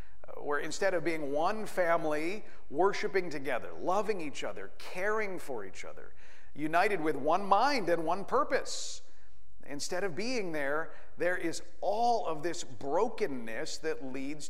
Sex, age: male, 50-69